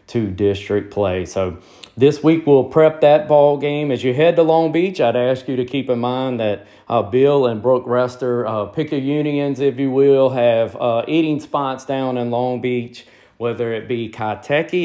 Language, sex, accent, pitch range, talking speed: English, male, American, 110-130 Hz, 200 wpm